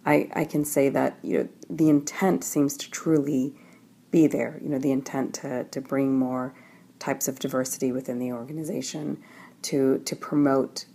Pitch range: 130-150 Hz